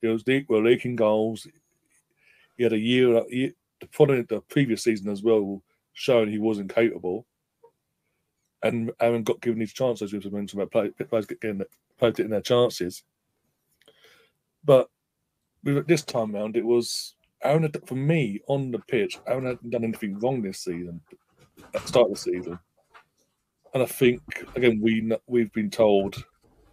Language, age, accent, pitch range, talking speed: English, 30-49, British, 105-130 Hz, 165 wpm